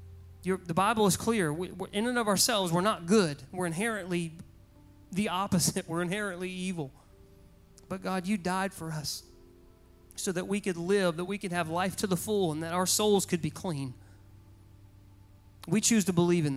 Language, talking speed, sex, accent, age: English, 190 wpm, male, American, 30-49